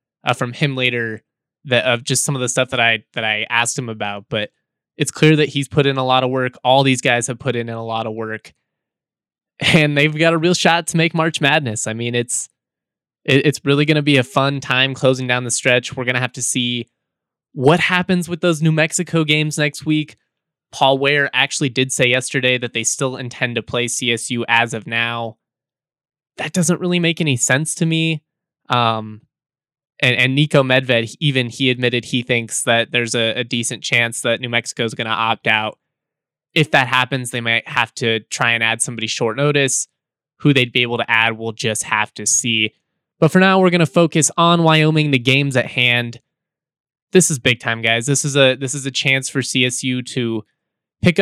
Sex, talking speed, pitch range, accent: male, 210 wpm, 120-150 Hz, American